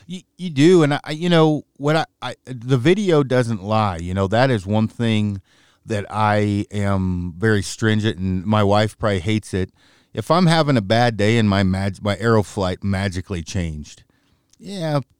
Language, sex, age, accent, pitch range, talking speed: English, male, 50-69, American, 100-130 Hz, 180 wpm